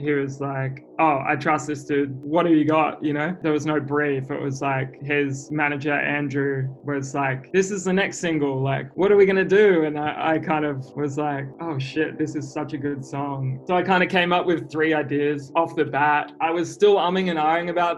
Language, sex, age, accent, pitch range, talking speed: English, male, 20-39, Australian, 140-160 Hz, 240 wpm